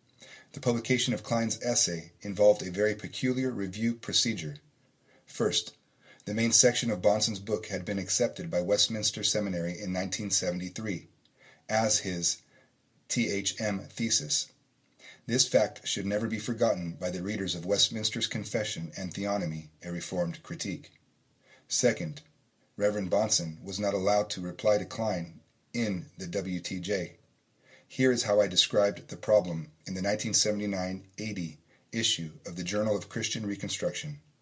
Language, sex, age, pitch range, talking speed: English, male, 30-49, 90-110 Hz, 135 wpm